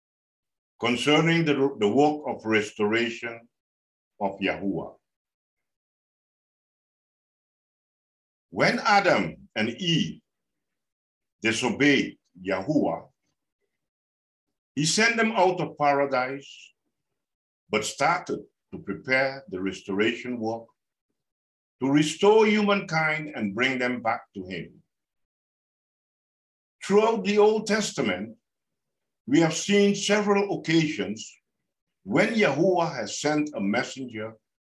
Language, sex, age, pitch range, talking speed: English, male, 60-79, 110-185 Hz, 90 wpm